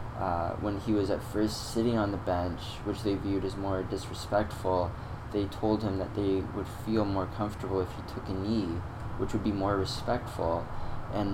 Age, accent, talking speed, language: 20-39, American, 190 wpm, English